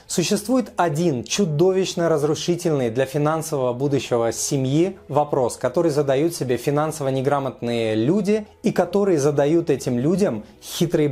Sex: male